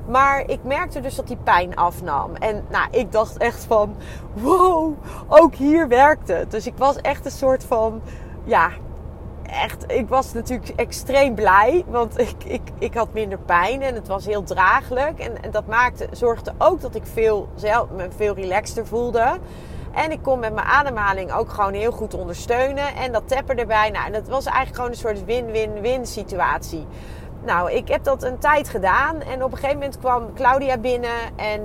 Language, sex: Dutch, female